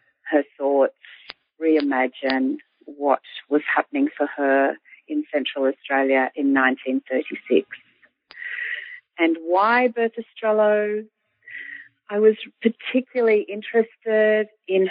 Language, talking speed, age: English, 95 wpm, 40-59